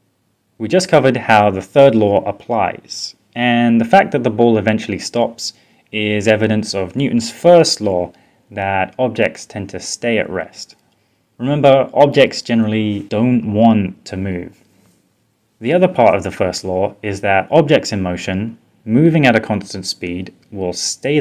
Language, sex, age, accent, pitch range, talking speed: English, male, 20-39, British, 95-125 Hz, 155 wpm